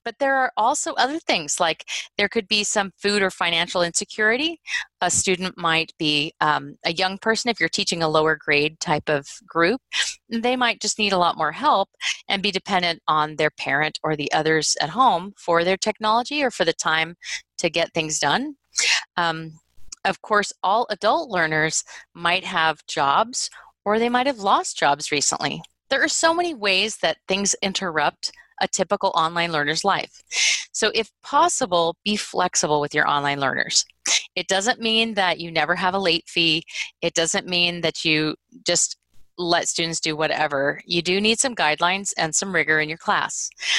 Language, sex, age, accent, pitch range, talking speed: English, female, 30-49, American, 160-220 Hz, 180 wpm